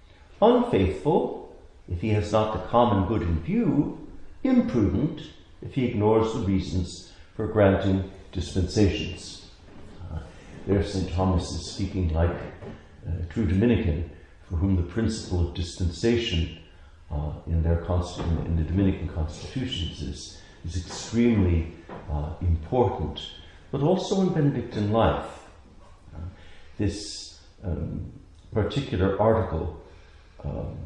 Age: 60-79